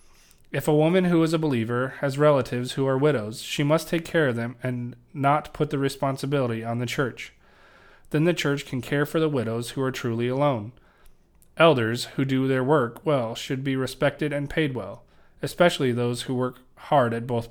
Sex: male